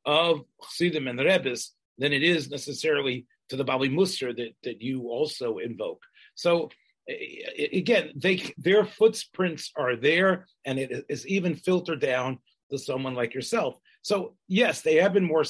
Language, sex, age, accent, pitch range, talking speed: English, male, 40-59, American, 125-185 Hz, 155 wpm